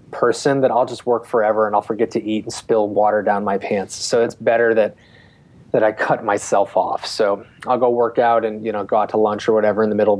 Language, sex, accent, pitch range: English, male, American, 110-130 Hz